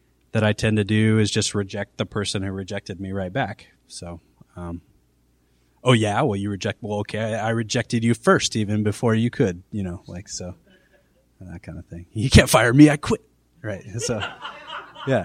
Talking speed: 195 wpm